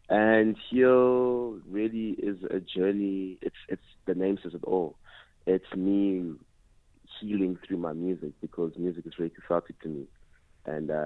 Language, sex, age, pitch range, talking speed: English, male, 30-49, 85-100 Hz, 150 wpm